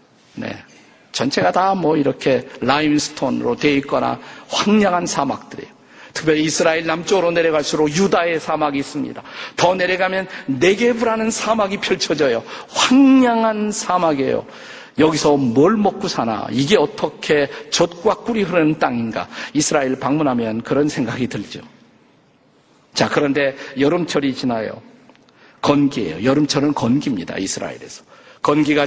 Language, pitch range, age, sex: Korean, 150-205 Hz, 50-69, male